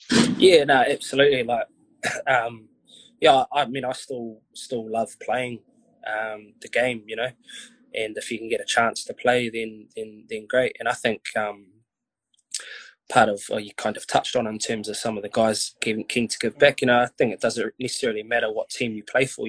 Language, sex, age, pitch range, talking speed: English, male, 20-39, 110-150 Hz, 220 wpm